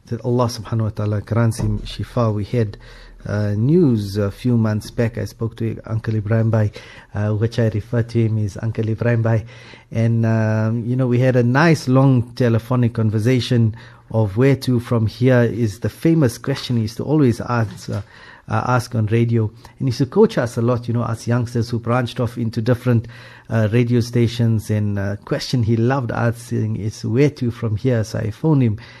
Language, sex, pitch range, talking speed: English, male, 110-125 Hz, 195 wpm